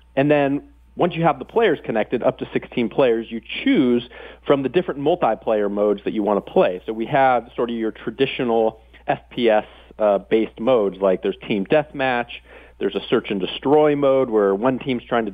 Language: English